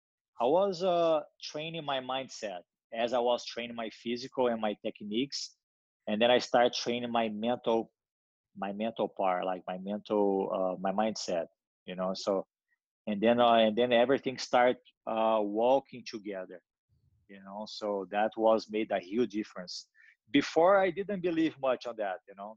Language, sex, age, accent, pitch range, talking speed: English, male, 20-39, Brazilian, 105-120 Hz, 165 wpm